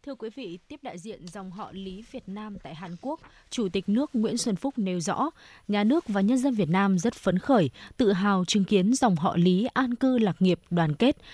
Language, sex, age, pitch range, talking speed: Vietnamese, female, 20-39, 180-240 Hz, 240 wpm